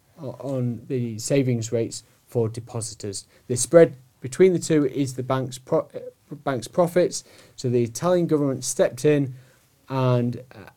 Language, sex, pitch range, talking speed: English, male, 125-145 Hz, 135 wpm